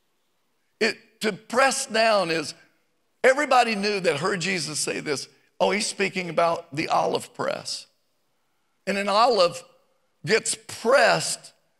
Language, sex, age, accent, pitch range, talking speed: English, male, 50-69, American, 170-225 Hz, 115 wpm